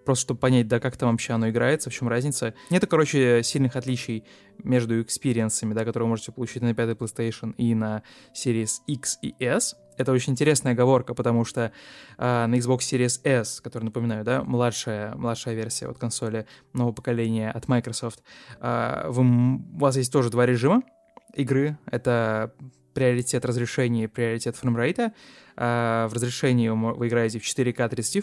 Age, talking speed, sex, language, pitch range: 20-39, 160 wpm, male, Russian, 115-130 Hz